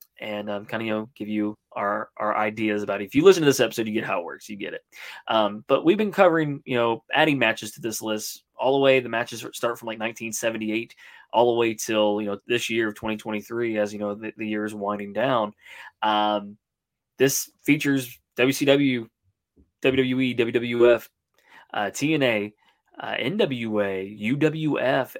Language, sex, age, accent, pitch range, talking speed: English, male, 20-39, American, 105-140 Hz, 185 wpm